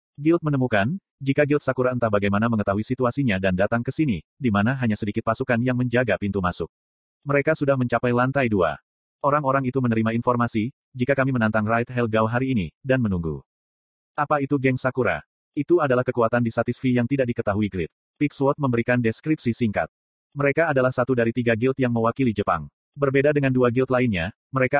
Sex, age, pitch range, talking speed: male, 30-49, 110-135 Hz, 170 wpm